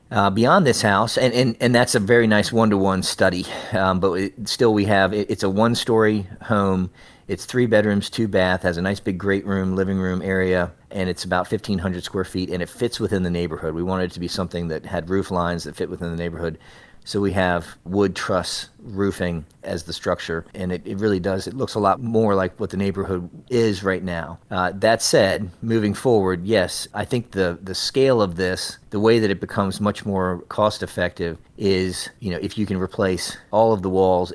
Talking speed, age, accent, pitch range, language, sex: 215 wpm, 40-59, American, 90-105 Hz, English, male